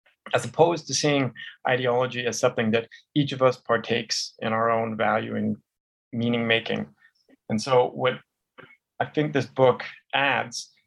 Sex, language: male, English